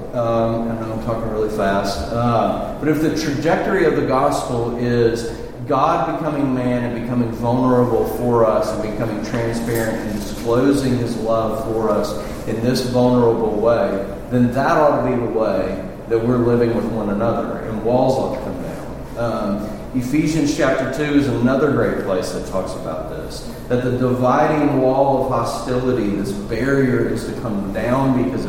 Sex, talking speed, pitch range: male, 170 wpm, 110-130 Hz